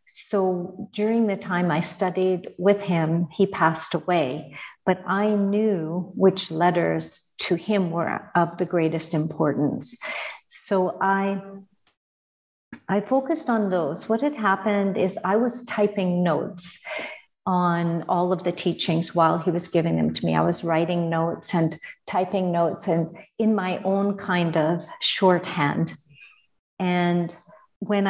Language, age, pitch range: English, 50-69, 165-195 Hz